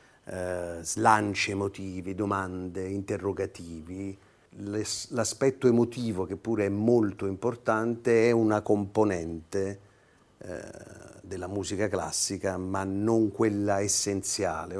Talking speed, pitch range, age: 95 wpm, 95-110 Hz, 40-59